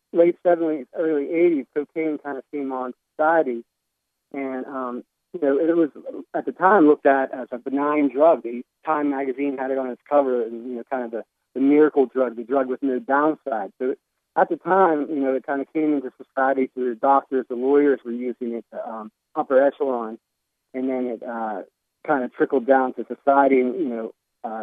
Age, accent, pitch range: 40-59, American, 120-140 Hz